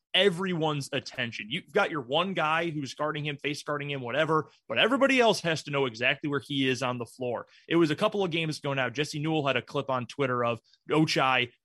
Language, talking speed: English, 225 wpm